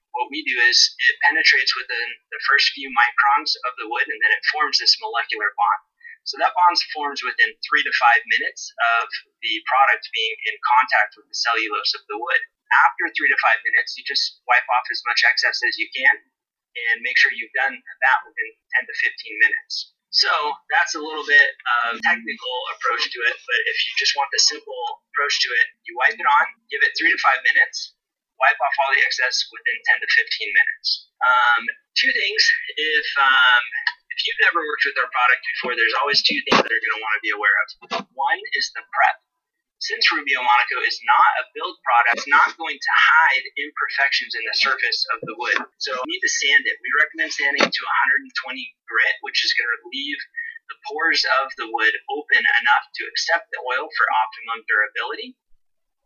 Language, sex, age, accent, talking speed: English, male, 30-49, American, 205 wpm